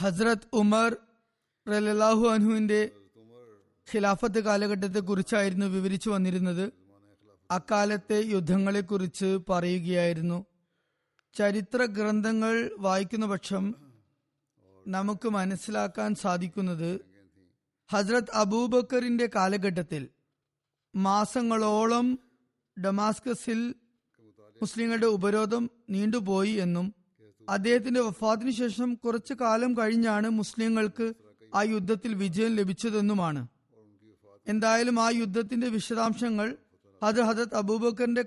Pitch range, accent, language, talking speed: 175-225 Hz, native, Malayalam, 65 wpm